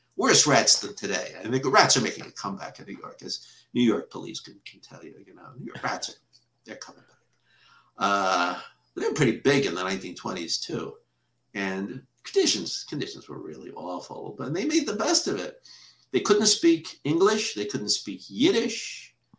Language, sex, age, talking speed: English, male, 50-69, 185 wpm